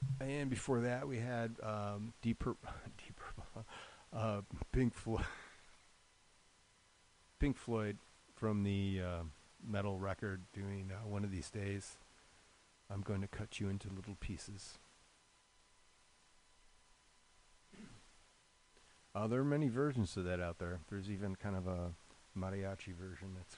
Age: 40-59